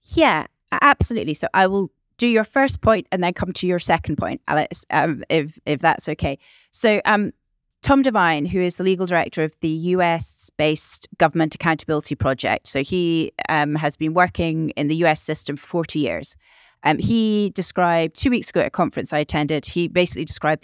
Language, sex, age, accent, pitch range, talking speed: English, female, 30-49, British, 160-215 Hz, 185 wpm